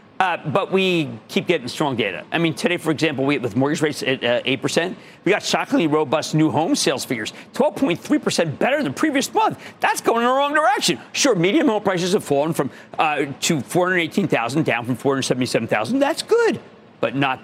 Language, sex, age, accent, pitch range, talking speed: English, male, 50-69, American, 140-215 Hz, 195 wpm